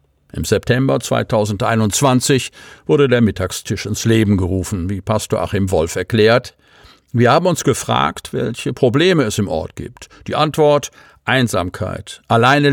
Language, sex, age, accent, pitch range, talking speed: German, male, 50-69, German, 95-125 Hz, 130 wpm